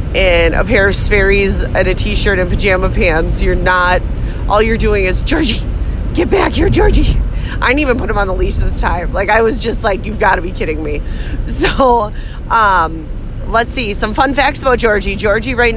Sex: female